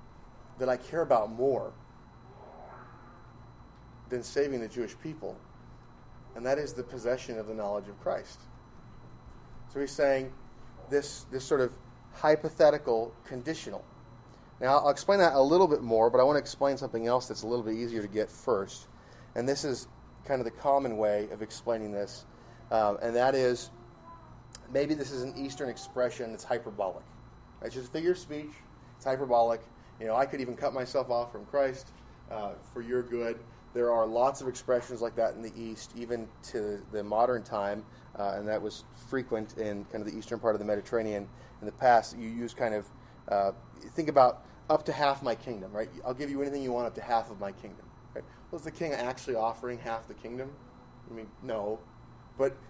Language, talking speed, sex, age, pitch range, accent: English, 190 wpm, male, 30-49, 115-135 Hz, American